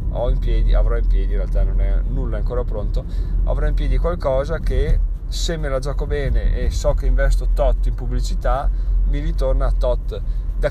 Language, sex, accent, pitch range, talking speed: Italian, male, native, 90-125 Hz, 190 wpm